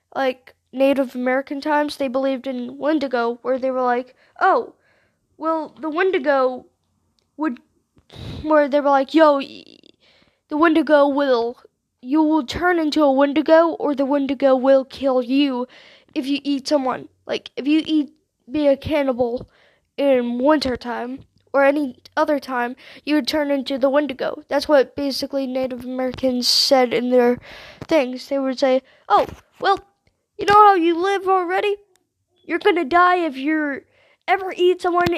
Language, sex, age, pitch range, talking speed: English, female, 10-29, 265-310 Hz, 150 wpm